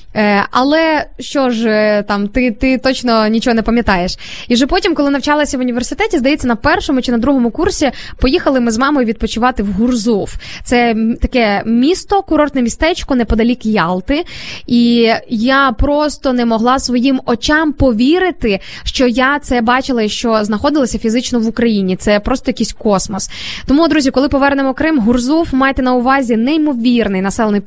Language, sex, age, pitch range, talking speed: Ukrainian, female, 20-39, 230-290 Hz, 150 wpm